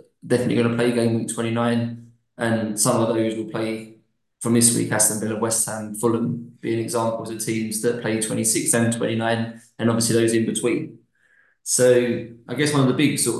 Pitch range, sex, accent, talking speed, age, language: 115-125 Hz, male, British, 195 wpm, 20-39, English